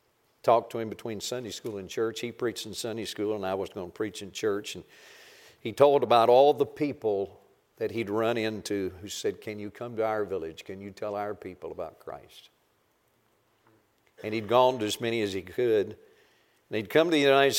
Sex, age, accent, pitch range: male, 50-69, American, 110-150 Hz